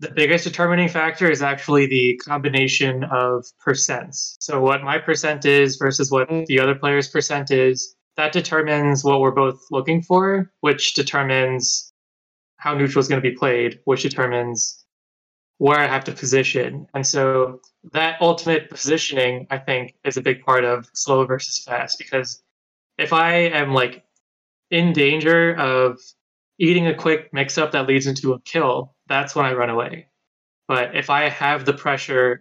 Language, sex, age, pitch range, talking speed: English, male, 20-39, 130-150 Hz, 165 wpm